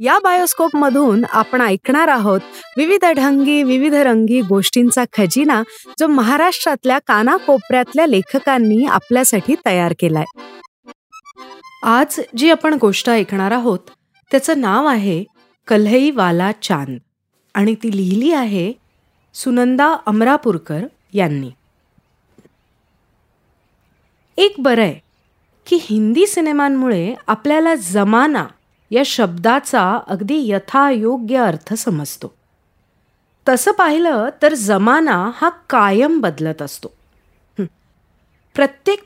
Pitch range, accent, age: 205-295 Hz, native, 30-49